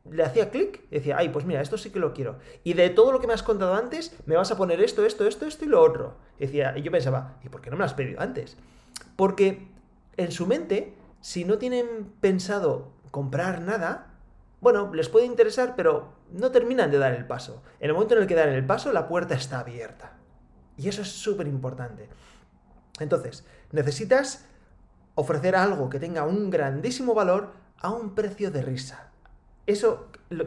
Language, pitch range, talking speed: Spanish, 140-205 Hz, 195 wpm